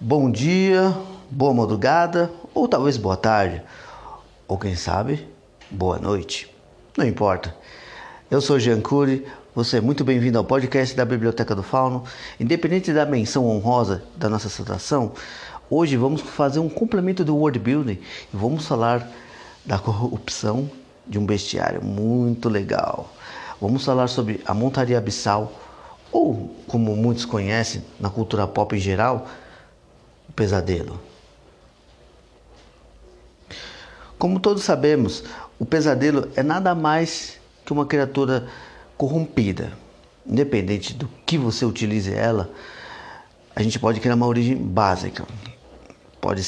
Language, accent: Portuguese, Brazilian